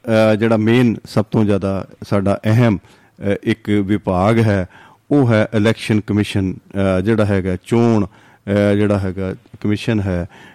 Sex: male